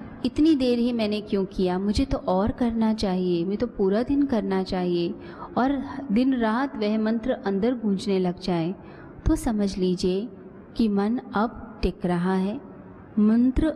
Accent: native